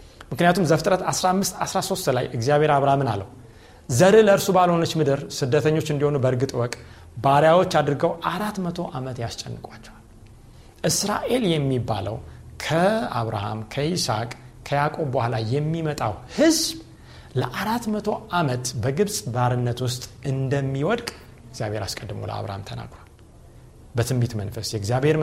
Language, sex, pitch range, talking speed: Amharic, male, 120-175 Hz, 95 wpm